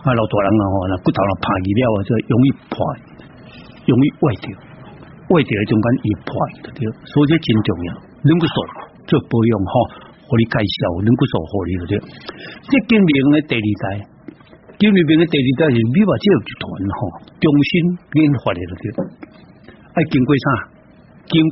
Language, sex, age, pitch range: Chinese, male, 60-79, 115-160 Hz